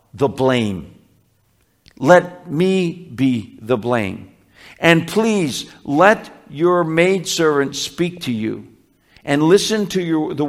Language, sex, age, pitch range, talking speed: English, male, 50-69, 125-175 Hz, 110 wpm